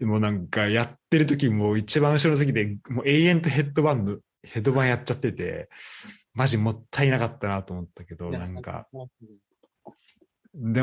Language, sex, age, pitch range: Japanese, male, 20-39, 100-135 Hz